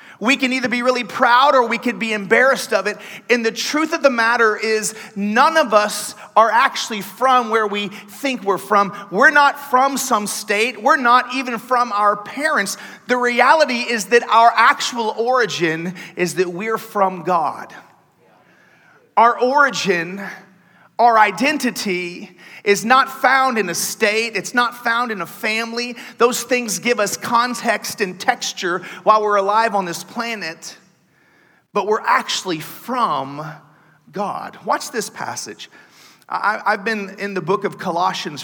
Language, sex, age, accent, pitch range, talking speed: English, male, 30-49, American, 180-240 Hz, 155 wpm